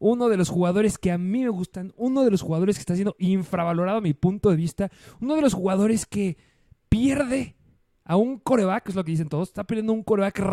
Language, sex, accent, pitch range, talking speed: Spanish, male, Mexican, 170-220 Hz, 230 wpm